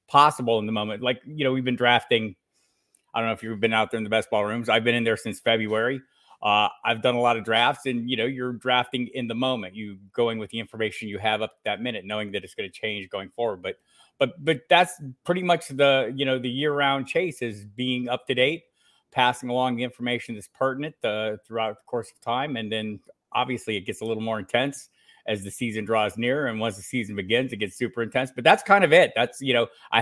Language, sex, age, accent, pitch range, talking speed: English, male, 30-49, American, 110-140 Hz, 250 wpm